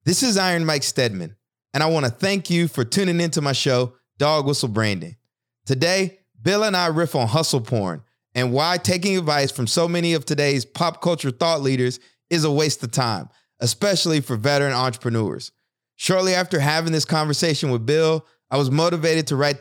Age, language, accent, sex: 30-49, English, American, male